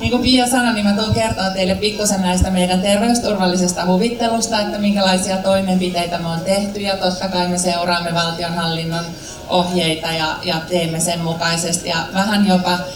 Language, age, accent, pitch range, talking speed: Finnish, 30-49, native, 175-205 Hz, 160 wpm